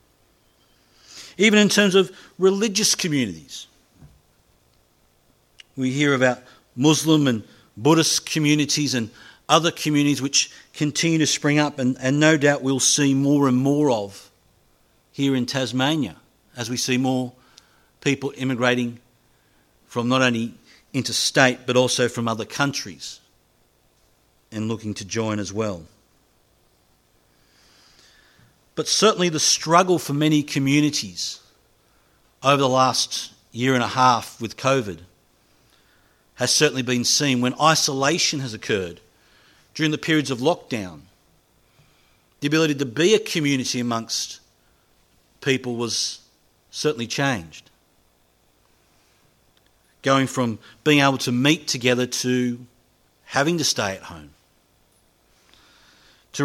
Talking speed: 115 wpm